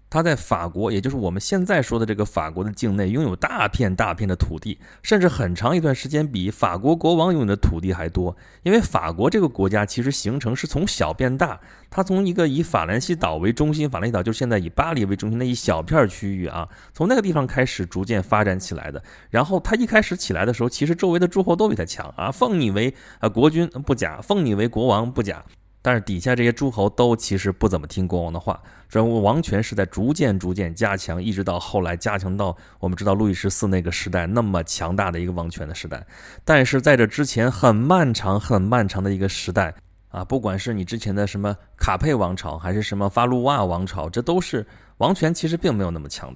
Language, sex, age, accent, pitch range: Chinese, male, 20-39, native, 95-130 Hz